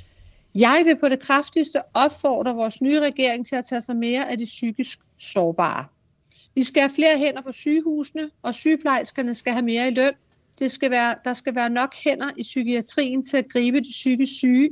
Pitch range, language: 220-275 Hz, Danish